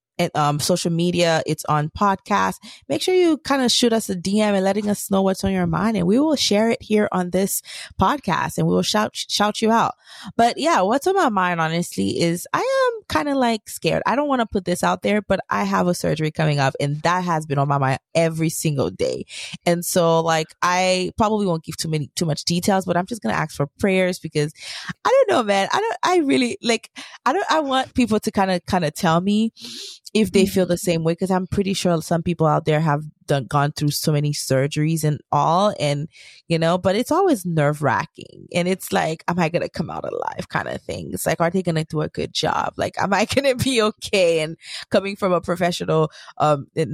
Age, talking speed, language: 20-39, 240 wpm, English